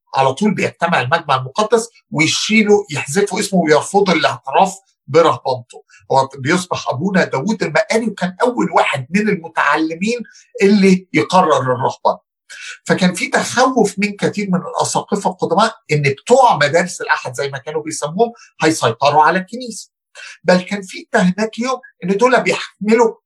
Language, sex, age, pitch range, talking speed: Arabic, male, 50-69, 150-210 Hz, 130 wpm